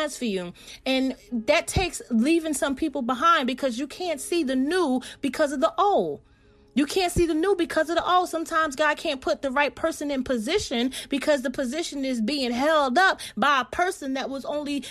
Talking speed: 200 wpm